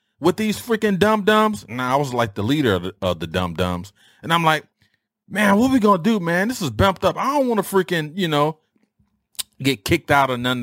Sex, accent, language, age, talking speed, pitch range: male, American, English, 30-49, 250 wpm, 95-150 Hz